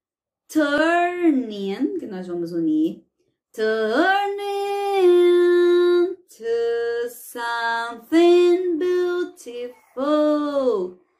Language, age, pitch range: Portuguese, 30-49, 255-355 Hz